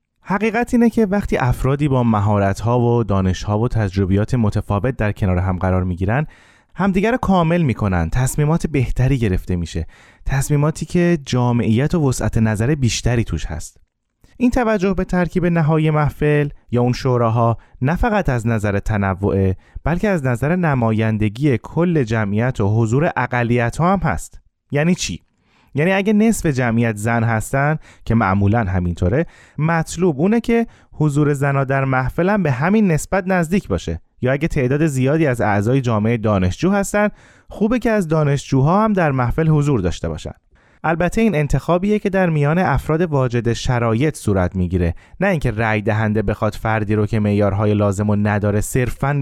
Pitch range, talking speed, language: 105-160 Hz, 150 wpm, Persian